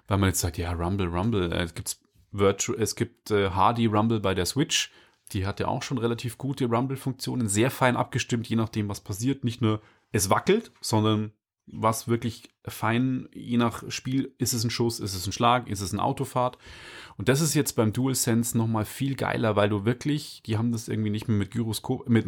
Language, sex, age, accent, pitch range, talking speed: German, male, 30-49, German, 105-125 Hz, 205 wpm